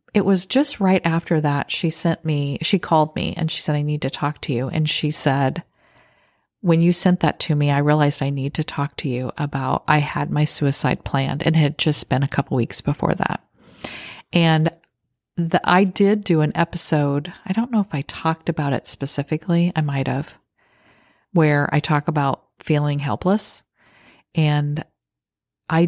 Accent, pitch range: American, 145-175 Hz